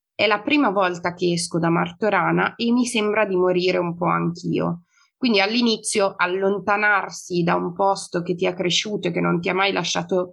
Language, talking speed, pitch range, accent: Italian, 190 wpm, 180-205 Hz, native